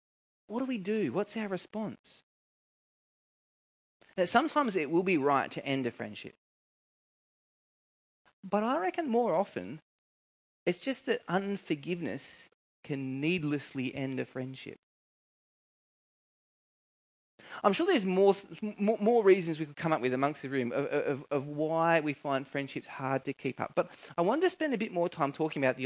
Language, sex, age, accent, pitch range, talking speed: English, male, 20-39, Australian, 145-210 Hz, 160 wpm